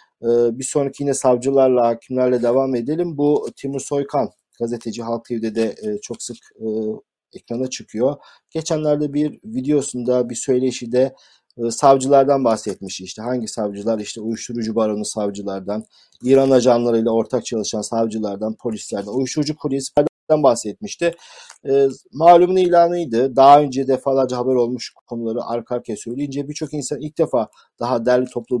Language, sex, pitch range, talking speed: Turkish, male, 115-140 Hz, 125 wpm